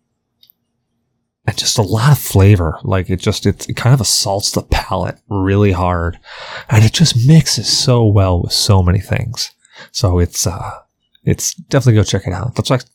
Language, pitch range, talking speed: English, 95-125 Hz, 180 wpm